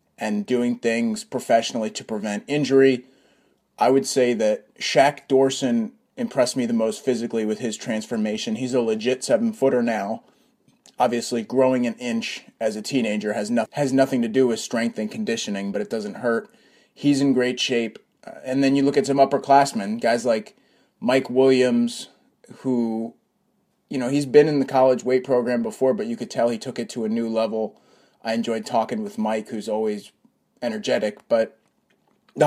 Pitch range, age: 115-135 Hz, 30-49